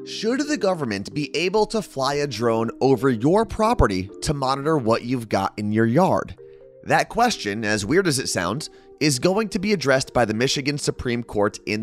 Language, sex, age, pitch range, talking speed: English, male, 30-49, 105-155 Hz, 195 wpm